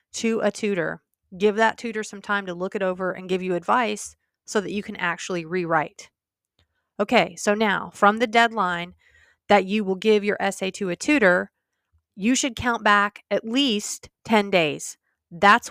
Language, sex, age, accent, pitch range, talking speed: English, female, 30-49, American, 180-220 Hz, 175 wpm